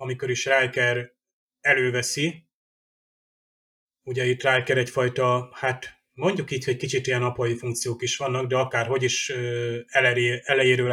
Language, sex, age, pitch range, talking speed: Hungarian, male, 30-49, 125-145 Hz, 120 wpm